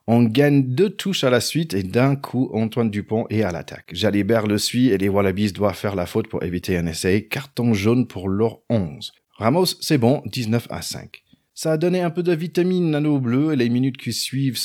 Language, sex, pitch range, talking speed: French, male, 105-150 Hz, 220 wpm